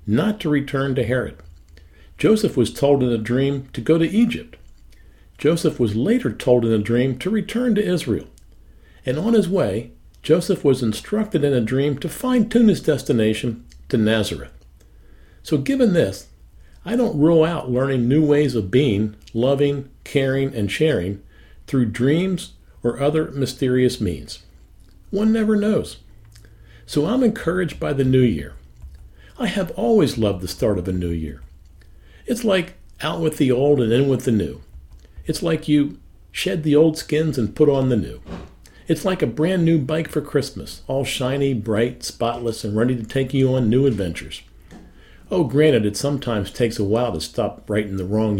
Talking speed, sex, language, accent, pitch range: 175 wpm, male, English, American, 105-155 Hz